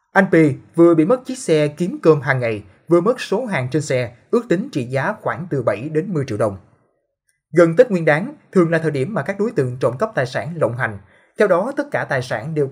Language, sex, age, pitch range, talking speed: Vietnamese, male, 20-39, 135-180 Hz, 250 wpm